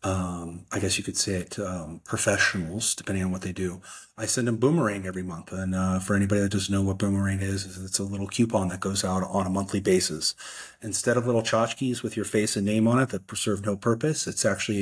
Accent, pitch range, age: American, 95-115 Hz, 30-49